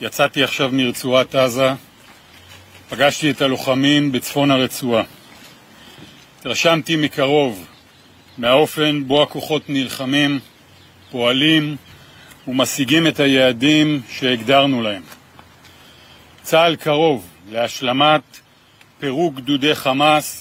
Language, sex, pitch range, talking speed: Hebrew, male, 125-155 Hz, 80 wpm